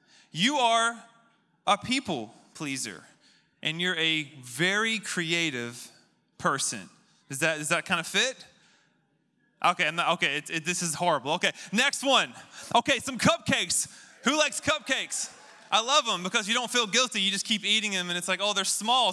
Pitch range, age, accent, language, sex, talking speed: 160-225 Hz, 20-39, American, English, male, 175 wpm